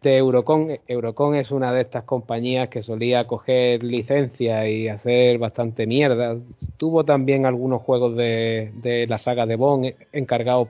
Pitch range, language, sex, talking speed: 120-150 Hz, Spanish, male, 150 wpm